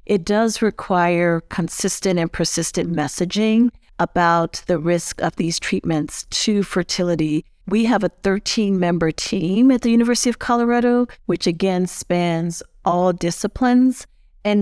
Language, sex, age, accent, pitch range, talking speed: English, female, 40-59, American, 175-215 Hz, 125 wpm